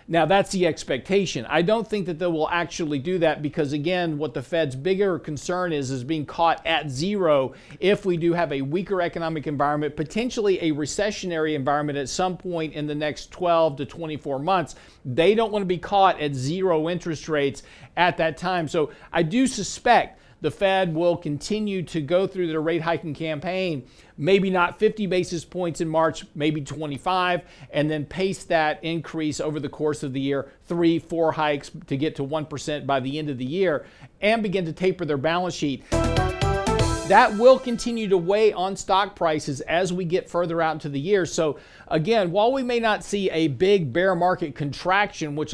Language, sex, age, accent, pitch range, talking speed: English, male, 50-69, American, 150-185 Hz, 190 wpm